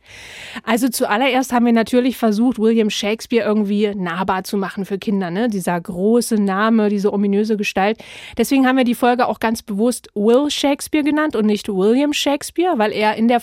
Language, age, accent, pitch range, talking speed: German, 30-49, German, 205-245 Hz, 175 wpm